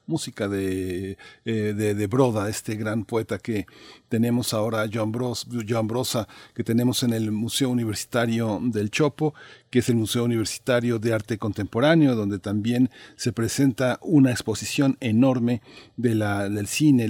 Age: 40-59